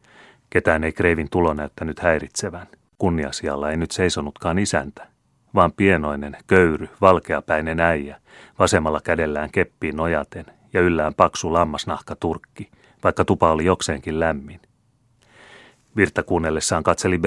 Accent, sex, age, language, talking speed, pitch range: native, male, 30-49, Finnish, 110 wpm, 80-100 Hz